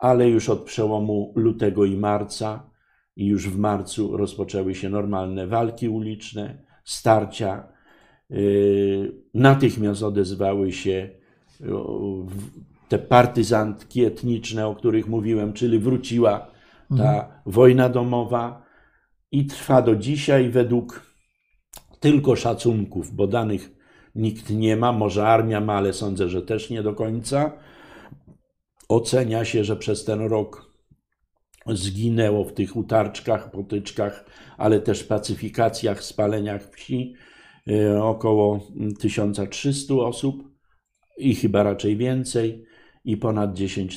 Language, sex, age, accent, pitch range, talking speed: Polish, male, 50-69, native, 100-120 Hz, 110 wpm